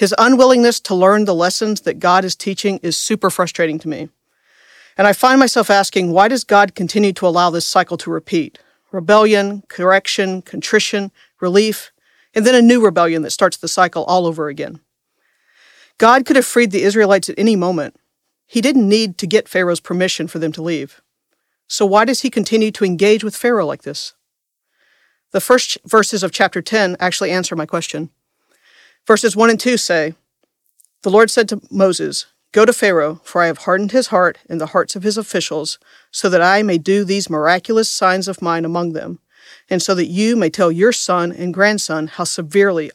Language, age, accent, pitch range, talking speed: English, 50-69, American, 170-215 Hz, 190 wpm